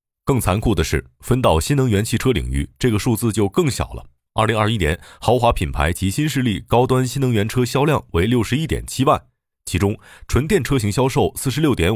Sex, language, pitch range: male, Chinese, 85-120 Hz